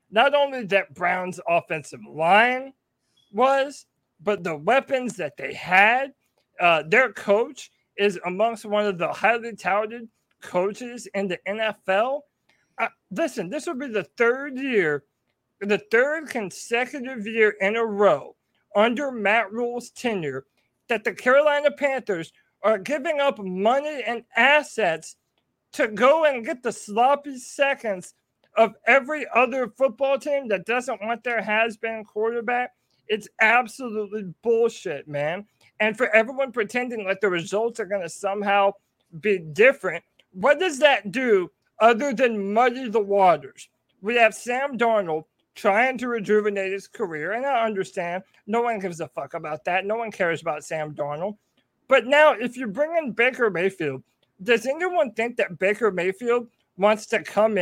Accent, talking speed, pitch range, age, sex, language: American, 150 wpm, 195-255 Hz, 40-59, male, English